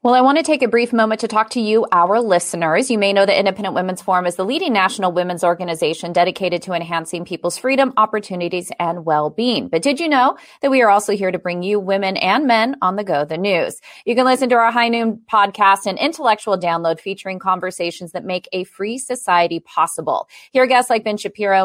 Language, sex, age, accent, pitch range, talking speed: English, female, 30-49, American, 175-235 Hz, 220 wpm